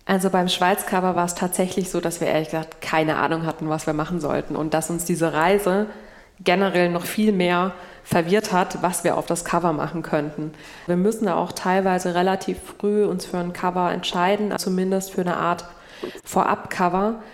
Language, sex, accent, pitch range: German, female, German, 175-195 Hz